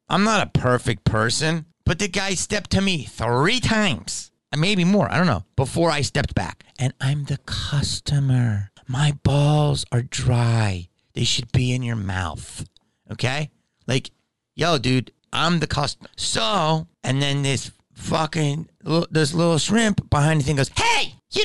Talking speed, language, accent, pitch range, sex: 160 wpm, English, American, 130-200 Hz, male